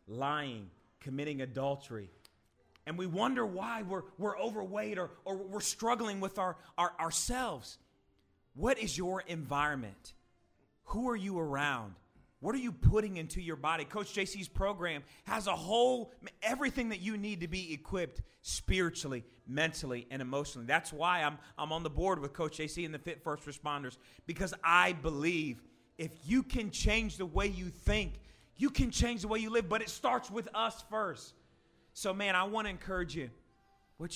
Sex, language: male, English